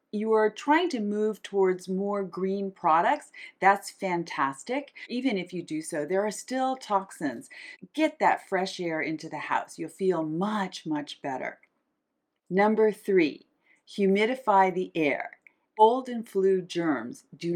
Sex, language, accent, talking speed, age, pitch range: female, English, American, 145 wpm, 40-59, 160-210 Hz